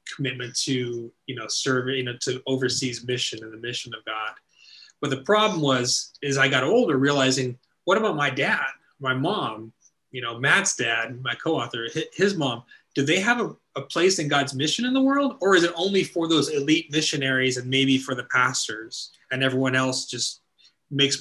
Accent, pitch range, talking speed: American, 125-150 Hz, 190 wpm